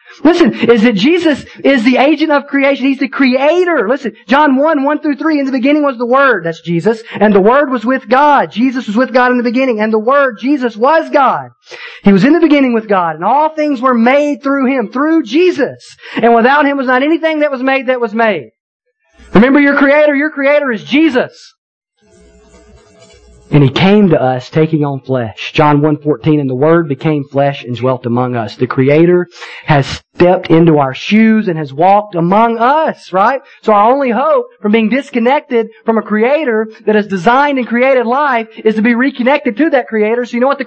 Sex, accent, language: male, American, English